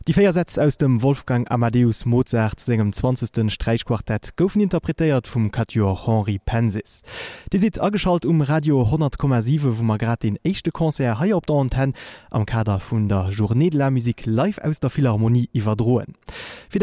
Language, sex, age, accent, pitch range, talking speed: German, male, 20-39, German, 110-150 Hz, 150 wpm